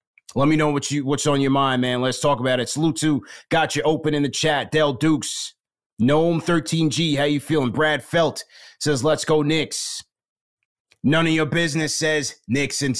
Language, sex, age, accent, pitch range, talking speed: English, male, 30-49, American, 130-155 Hz, 200 wpm